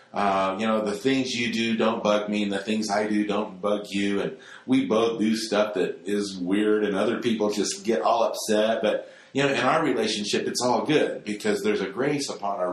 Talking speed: 245 wpm